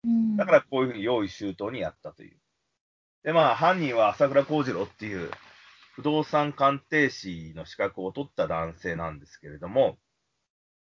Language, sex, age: Japanese, male, 30-49